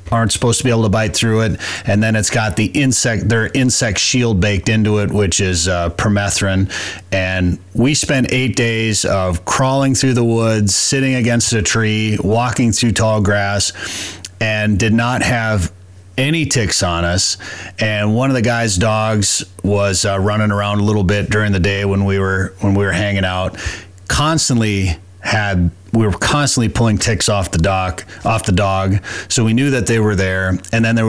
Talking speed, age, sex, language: 190 wpm, 30-49, male, English